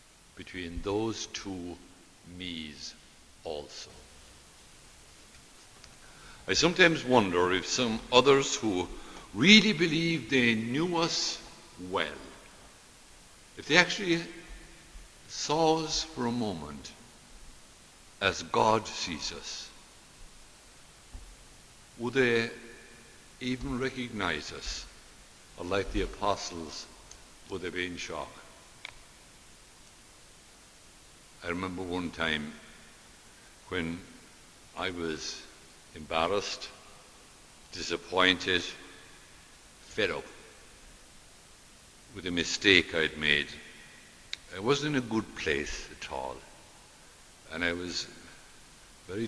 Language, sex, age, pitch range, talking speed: English, male, 60-79, 85-130 Hz, 90 wpm